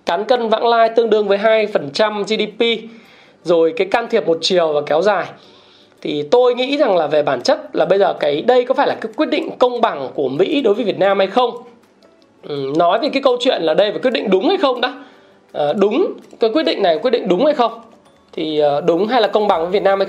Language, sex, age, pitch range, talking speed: Vietnamese, male, 20-39, 175-245 Hz, 250 wpm